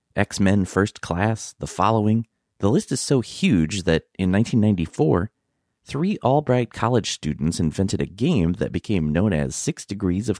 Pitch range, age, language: 85-130 Hz, 30-49, English